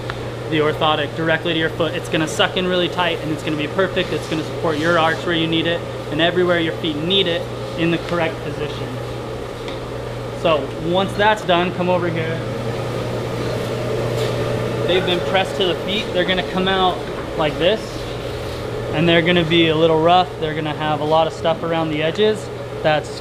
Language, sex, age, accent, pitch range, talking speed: English, male, 20-39, American, 150-175 Hz, 190 wpm